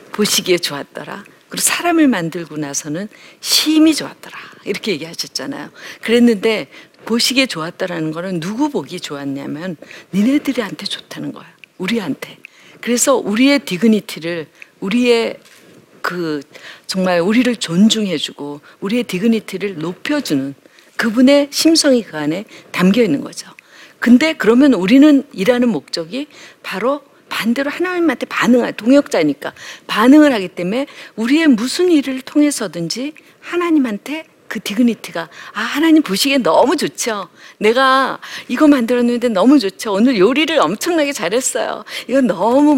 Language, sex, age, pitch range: Korean, female, 50-69, 195-285 Hz